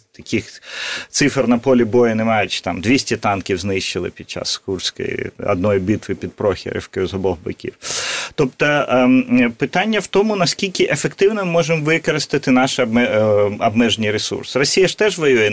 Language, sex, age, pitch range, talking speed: Ukrainian, male, 30-49, 105-135 Hz, 145 wpm